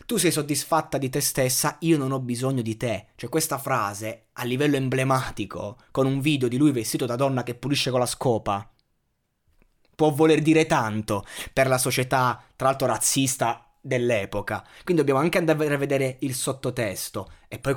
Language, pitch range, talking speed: Italian, 120-160 Hz, 175 wpm